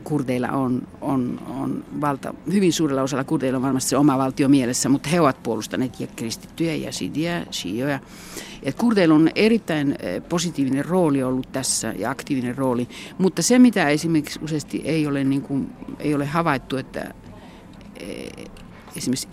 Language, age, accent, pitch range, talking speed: Finnish, 60-79, native, 130-165 Hz, 145 wpm